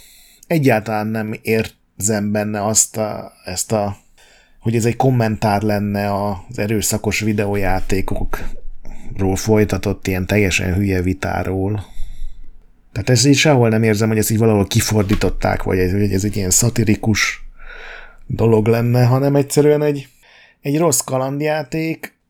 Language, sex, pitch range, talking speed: Hungarian, male, 100-120 Hz, 120 wpm